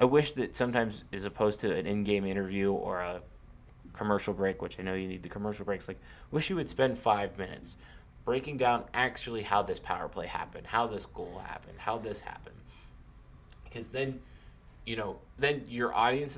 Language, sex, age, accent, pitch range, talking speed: English, male, 20-39, American, 95-120 Hz, 185 wpm